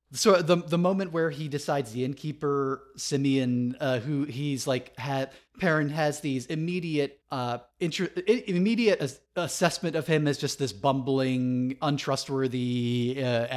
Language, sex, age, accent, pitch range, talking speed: English, male, 30-49, American, 125-145 Hz, 140 wpm